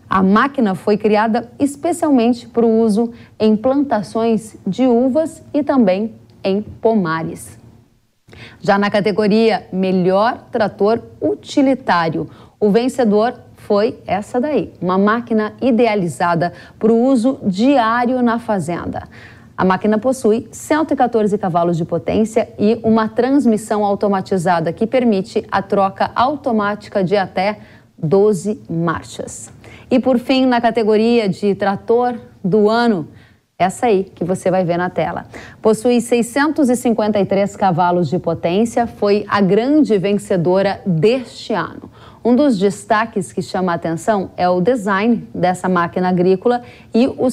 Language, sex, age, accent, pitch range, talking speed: Portuguese, female, 30-49, Brazilian, 185-235 Hz, 125 wpm